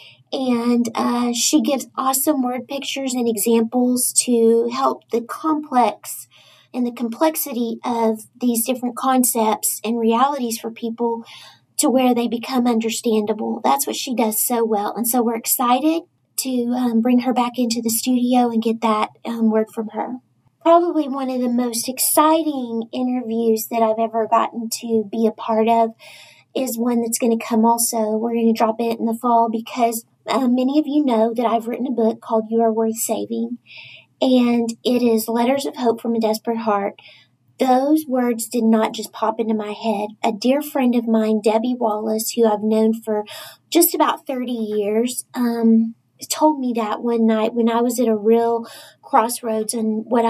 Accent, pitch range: American, 225-255 Hz